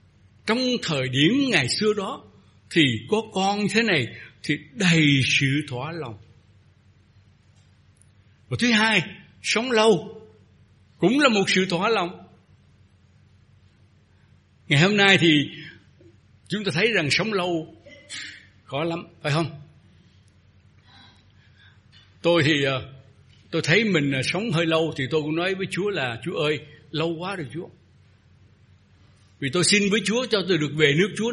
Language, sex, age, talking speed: Vietnamese, male, 60-79, 140 wpm